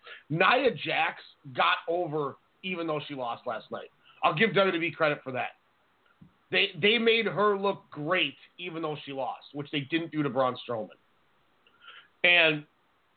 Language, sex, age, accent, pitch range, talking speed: English, male, 30-49, American, 140-180 Hz, 155 wpm